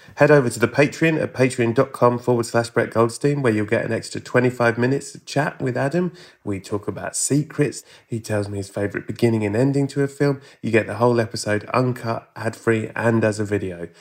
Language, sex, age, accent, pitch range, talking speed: English, male, 20-39, British, 100-120 Hz, 205 wpm